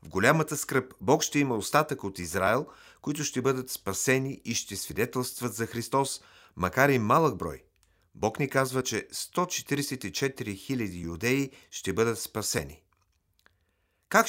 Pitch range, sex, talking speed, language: 105-140 Hz, male, 140 wpm, Bulgarian